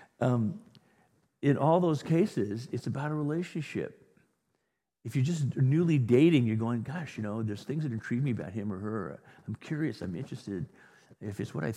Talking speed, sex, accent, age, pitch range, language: 185 wpm, male, American, 50-69, 110-145 Hz, English